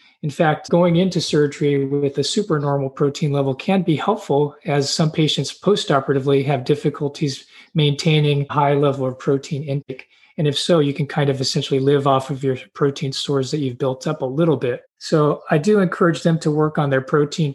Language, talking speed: English, 190 wpm